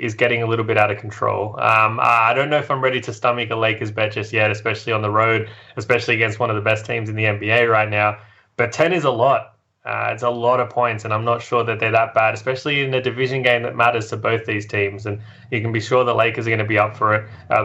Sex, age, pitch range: male, 20-39, 105-120 Hz